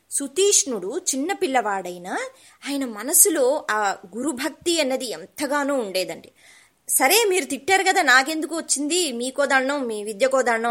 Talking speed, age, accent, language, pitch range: 110 wpm, 20-39, native, Telugu, 220-320 Hz